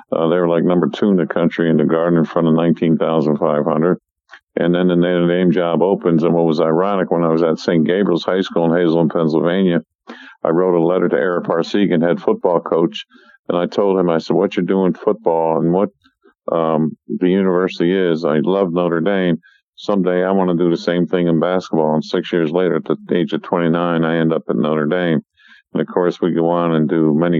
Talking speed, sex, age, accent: 225 wpm, male, 50-69, American